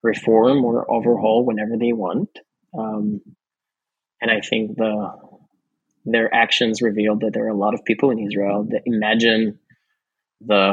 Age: 20-39